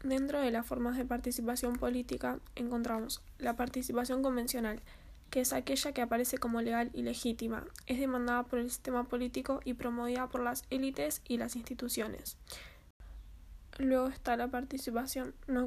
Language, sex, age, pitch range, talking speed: Spanish, female, 10-29, 240-260 Hz, 150 wpm